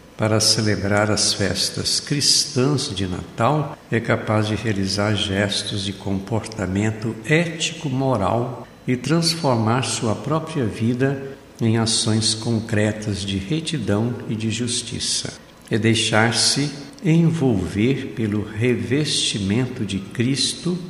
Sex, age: male, 60-79